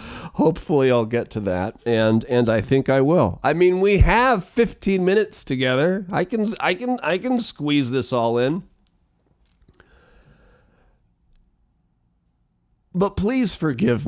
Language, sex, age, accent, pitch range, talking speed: English, male, 40-59, American, 115-160 Hz, 130 wpm